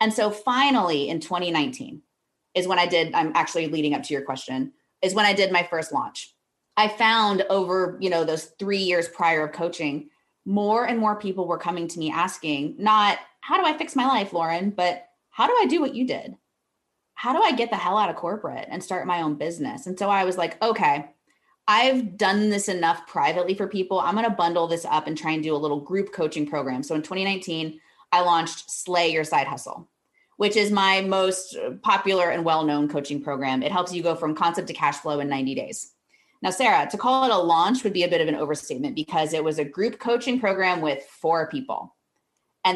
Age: 20-39